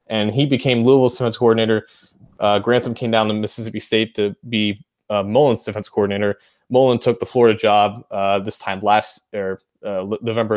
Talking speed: 185 wpm